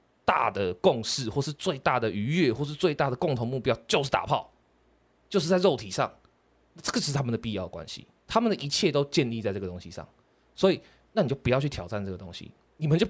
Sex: male